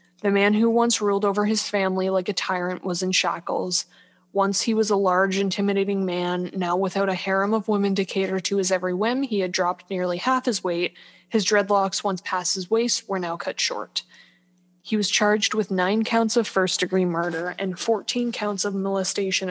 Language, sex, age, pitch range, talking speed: English, female, 20-39, 185-210 Hz, 195 wpm